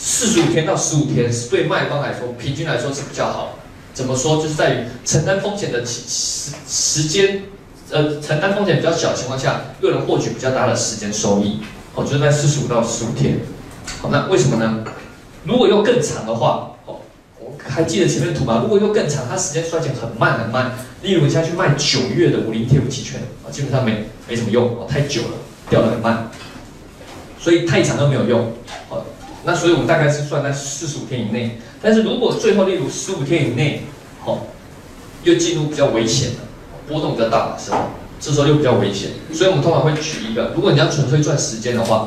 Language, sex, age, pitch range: Chinese, male, 20-39, 115-155 Hz